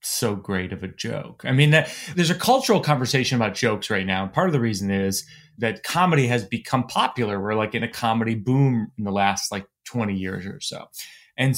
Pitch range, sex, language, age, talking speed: 115-165 Hz, male, English, 30-49, 210 wpm